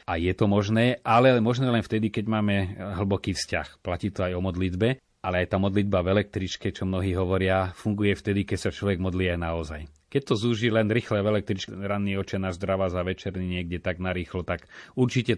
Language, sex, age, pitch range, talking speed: Slovak, male, 30-49, 90-100 Hz, 200 wpm